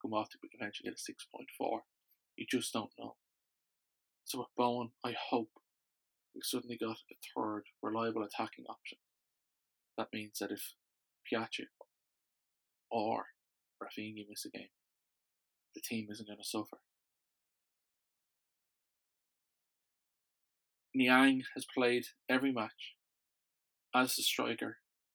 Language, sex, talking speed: English, male, 110 wpm